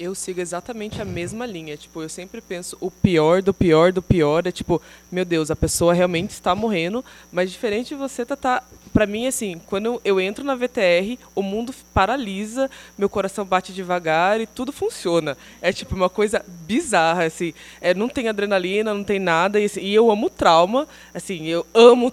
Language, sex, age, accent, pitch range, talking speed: Portuguese, female, 20-39, Brazilian, 180-250 Hz, 195 wpm